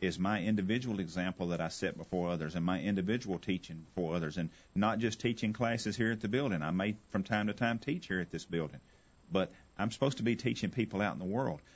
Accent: American